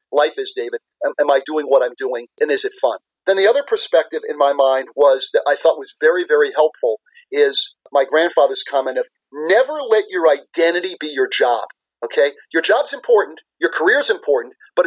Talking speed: 195 wpm